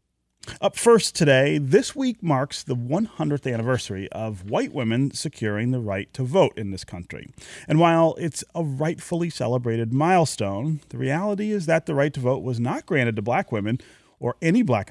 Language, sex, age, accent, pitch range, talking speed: English, male, 30-49, American, 110-150 Hz, 175 wpm